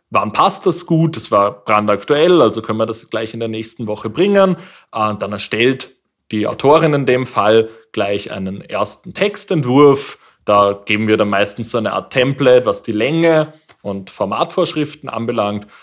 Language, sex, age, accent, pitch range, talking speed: German, male, 20-39, German, 100-140 Hz, 165 wpm